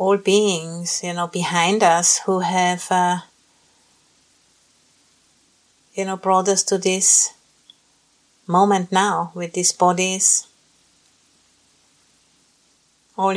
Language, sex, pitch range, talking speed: English, female, 175-190 Hz, 95 wpm